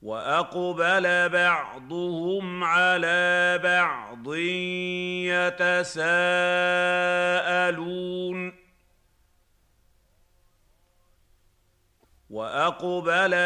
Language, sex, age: Arabic, male, 40-59